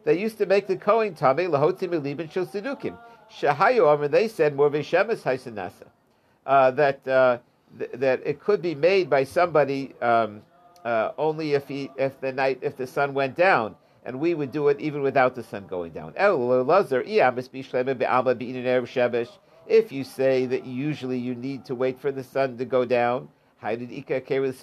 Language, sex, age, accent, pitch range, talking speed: English, male, 50-69, American, 130-175 Hz, 170 wpm